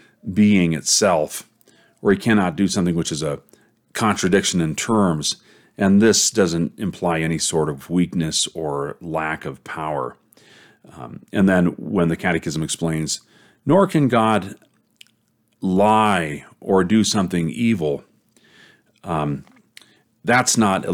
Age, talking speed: 40-59, 125 wpm